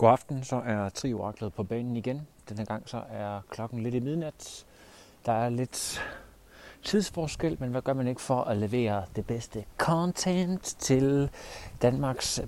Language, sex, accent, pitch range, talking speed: Danish, male, native, 105-130 Hz, 160 wpm